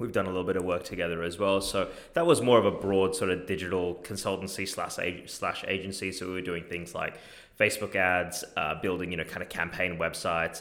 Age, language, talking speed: 20-39, English, 220 wpm